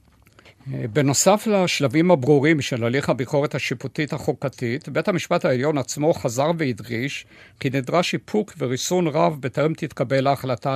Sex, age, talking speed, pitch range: male, 50-69, 125 wpm, 125-160 Hz